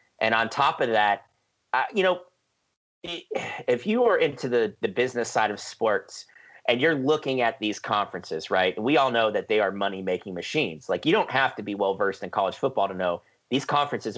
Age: 30-49